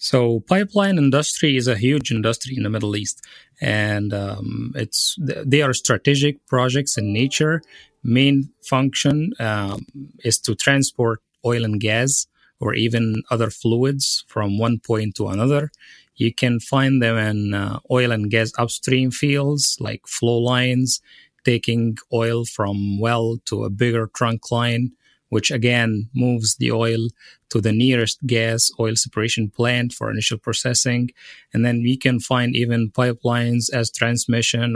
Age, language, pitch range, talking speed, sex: 30-49, English, 110-130 Hz, 145 wpm, male